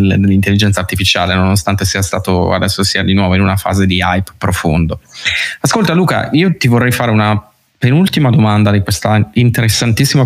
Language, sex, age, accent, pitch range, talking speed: Italian, male, 20-39, native, 95-110 Hz, 160 wpm